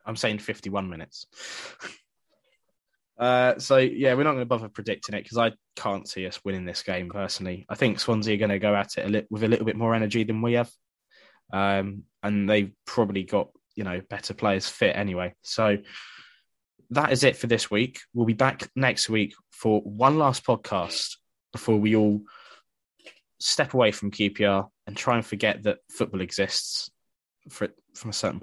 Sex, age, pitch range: male, 10-29, 100-115 Hz